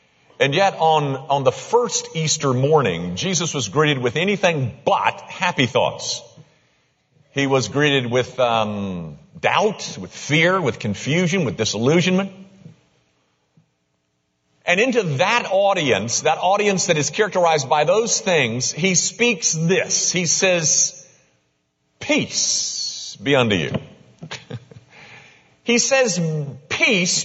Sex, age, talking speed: male, 50-69, 115 wpm